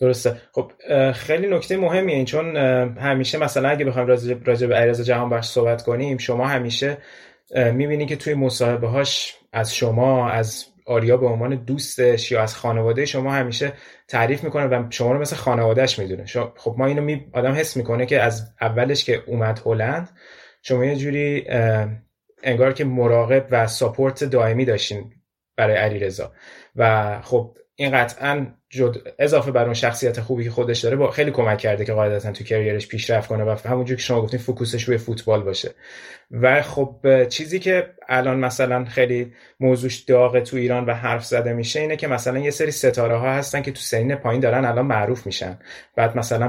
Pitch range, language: 115-135 Hz, Persian